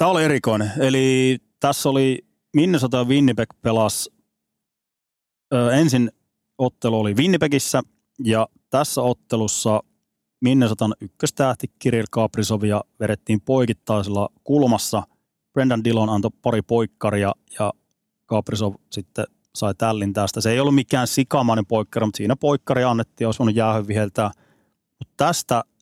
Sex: male